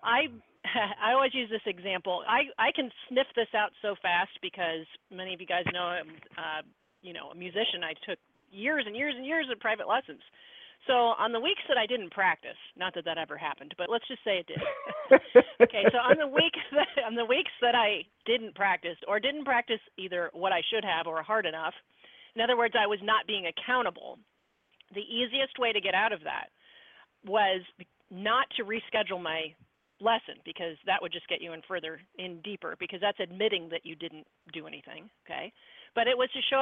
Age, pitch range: 40-59, 185-240 Hz